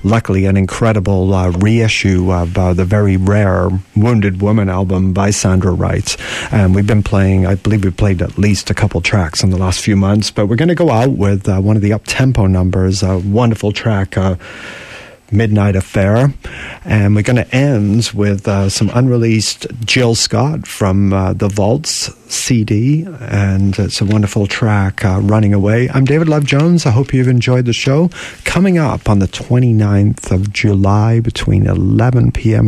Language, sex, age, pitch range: English, male, 40-59, 100-120 Hz